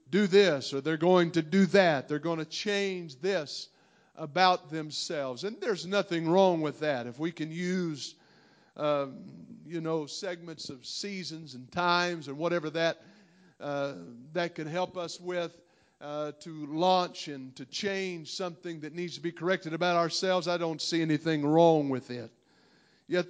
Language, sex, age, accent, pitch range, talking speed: English, male, 50-69, American, 160-195 Hz, 160 wpm